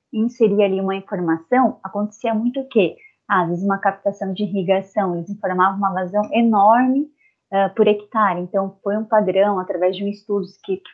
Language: Portuguese